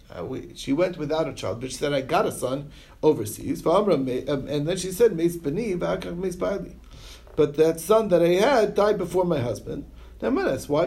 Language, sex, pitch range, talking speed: English, male, 120-155 Hz, 155 wpm